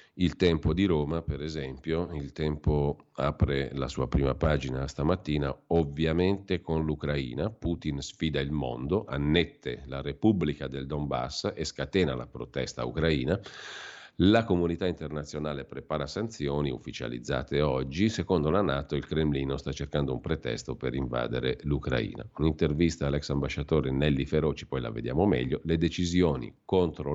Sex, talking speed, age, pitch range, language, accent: male, 135 wpm, 40-59, 70-80 Hz, Italian, native